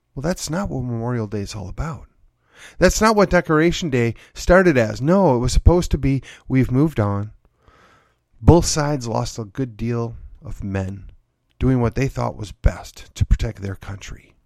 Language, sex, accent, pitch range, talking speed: English, male, American, 110-150 Hz, 180 wpm